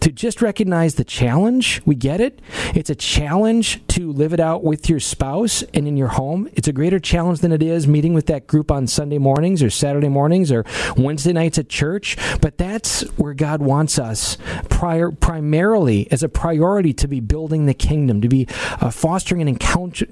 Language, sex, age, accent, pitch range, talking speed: English, male, 40-59, American, 130-165 Hz, 195 wpm